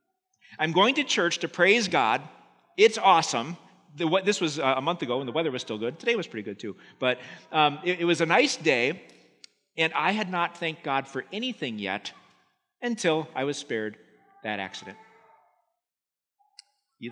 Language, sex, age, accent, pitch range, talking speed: English, male, 40-59, American, 130-175 Hz, 170 wpm